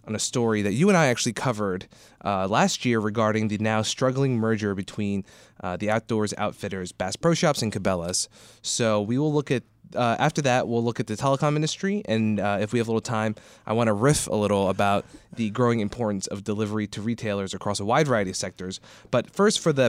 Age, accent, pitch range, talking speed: 20-39, American, 100-125 Hz, 220 wpm